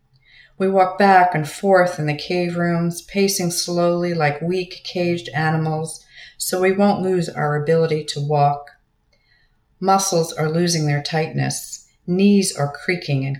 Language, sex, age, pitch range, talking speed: English, female, 50-69, 140-175 Hz, 145 wpm